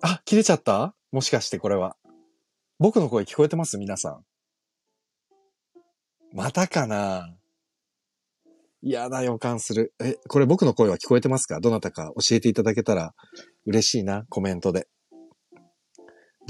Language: Japanese